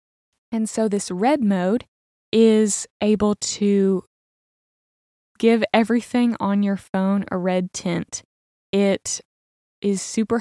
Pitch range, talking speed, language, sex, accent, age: 195-225 Hz, 110 wpm, English, female, American, 20-39